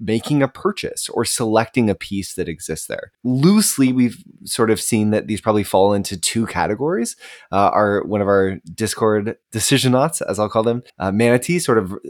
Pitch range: 95-130 Hz